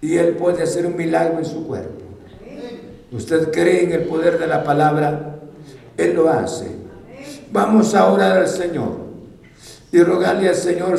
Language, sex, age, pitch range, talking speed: Spanish, male, 60-79, 160-210 Hz, 160 wpm